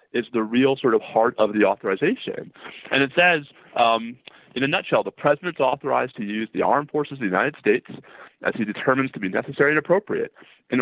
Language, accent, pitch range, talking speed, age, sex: English, American, 110-140 Hz, 205 wpm, 30-49, male